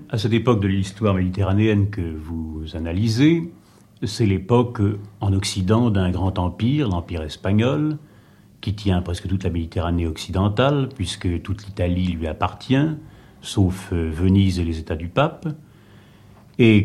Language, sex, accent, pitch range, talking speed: French, male, French, 95-115 Hz, 135 wpm